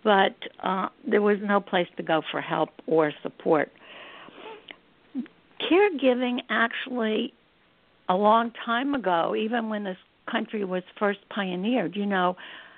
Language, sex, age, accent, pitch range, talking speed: English, female, 60-79, American, 180-230 Hz, 125 wpm